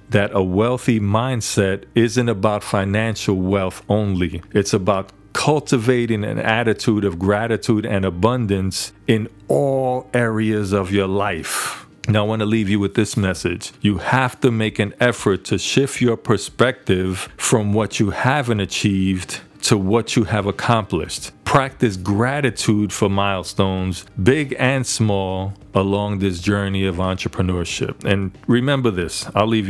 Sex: male